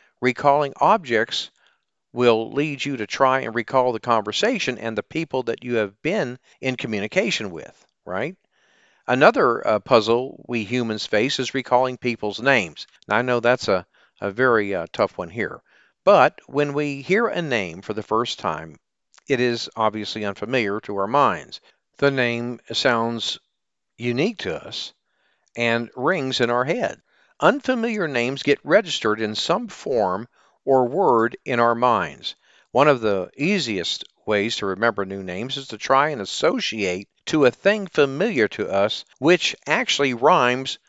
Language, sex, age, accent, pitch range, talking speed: English, male, 50-69, American, 115-145 Hz, 155 wpm